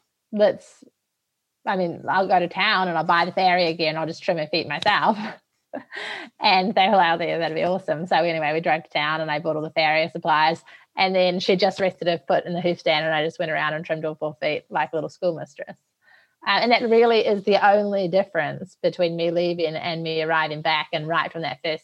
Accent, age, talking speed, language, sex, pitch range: Australian, 20-39, 230 wpm, English, female, 150-175 Hz